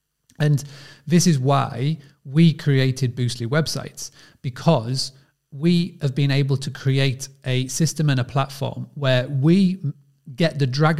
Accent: British